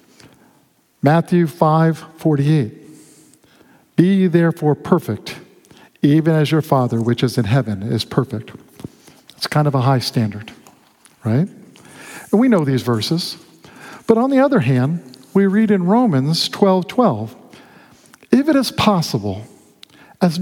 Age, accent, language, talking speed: 50-69, American, English, 130 wpm